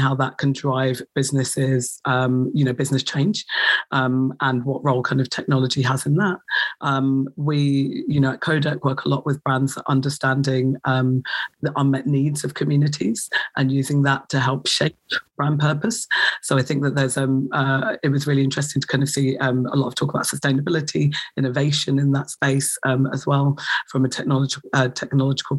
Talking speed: 185 wpm